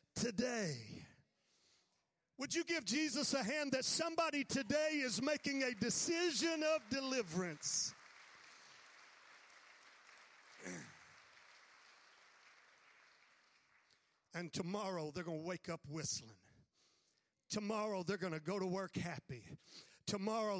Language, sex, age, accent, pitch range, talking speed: English, male, 50-69, American, 195-255 Hz, 95 wpm